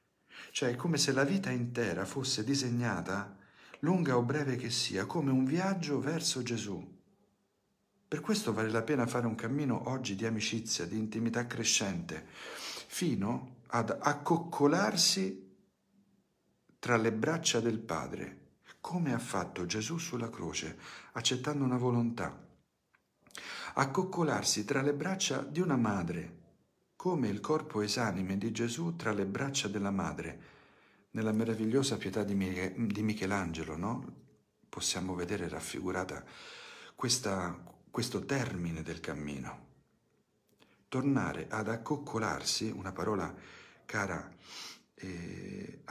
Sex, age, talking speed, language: male, 50-69, 115 wpm, Italian